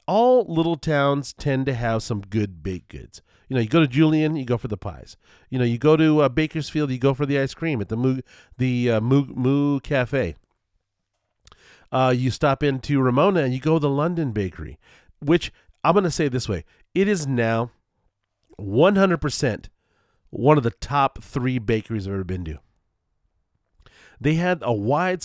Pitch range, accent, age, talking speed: 110-145 Hz, American, 40-59, 185 wpm